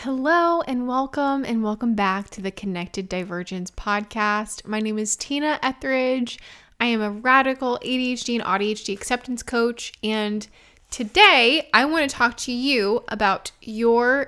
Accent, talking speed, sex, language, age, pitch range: American, 145 wpm, female, English, 20-39, 210-275 Hz